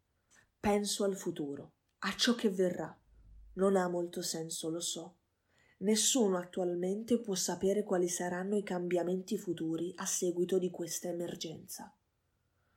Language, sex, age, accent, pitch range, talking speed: Italian, female, 20-39, native, 170-210 Hz, 125 wpm